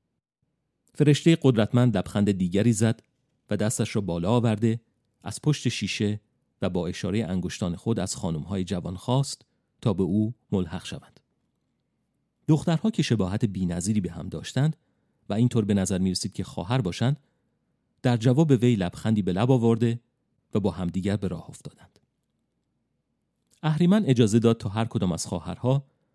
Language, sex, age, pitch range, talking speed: Persian, male, 40-59, 95-125 Hz, 150 wpm